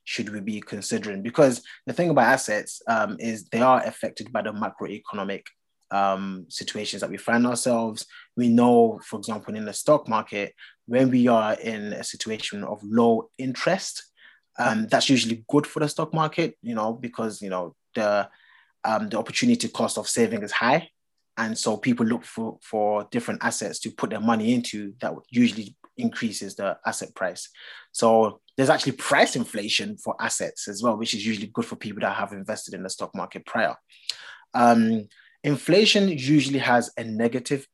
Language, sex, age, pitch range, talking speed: English, male, 20-39, 110-140 Hz, 175 wpm